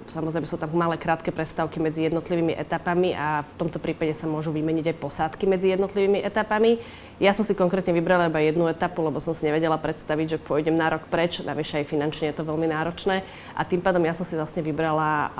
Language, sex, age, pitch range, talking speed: Slovak, female, 30-49, 155-185 Hz, 210 wpm